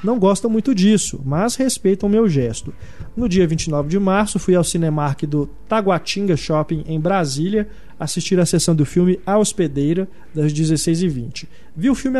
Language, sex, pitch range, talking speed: Portuguese, male, 160-200 Hz, 165 wpm